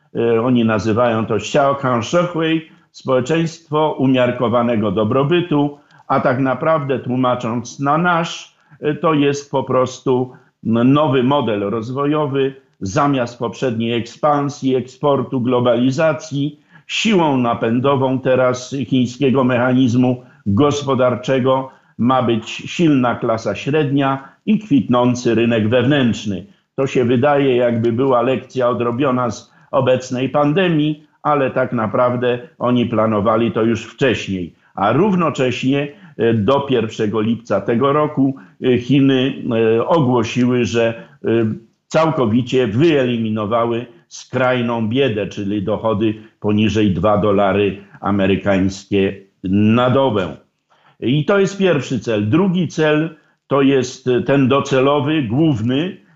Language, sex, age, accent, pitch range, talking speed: Polish, male, 50-69, native, 115-145 Hz, 100 wpm